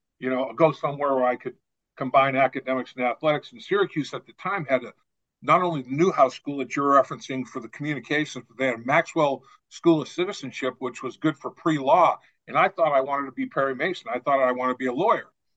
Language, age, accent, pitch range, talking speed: English, 50-69, American, 130-160 Hz, 225 wpm